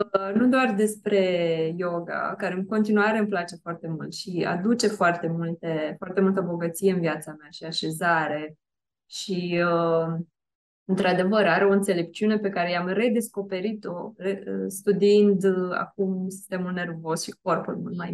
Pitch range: 175-220 Hz